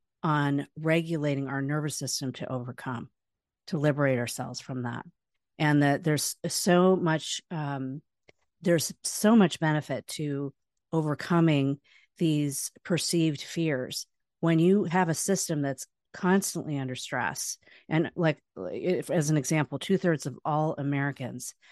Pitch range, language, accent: 135-165 Hz, English, American